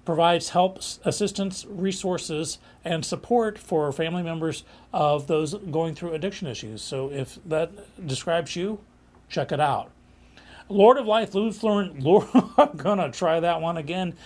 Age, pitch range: 40-59, 145-190 Hz